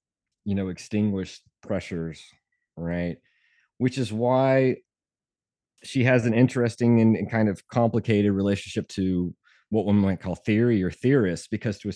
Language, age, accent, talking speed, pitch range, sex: English, 30-49, American, 145 wpm, 85-105 Hz, male